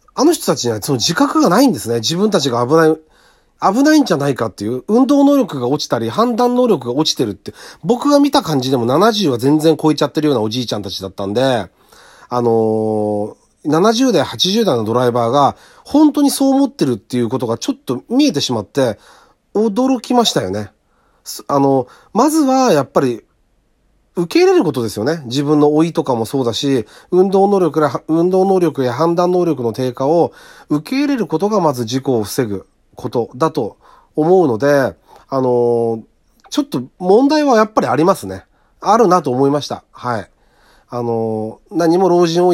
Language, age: Japanese, 40-59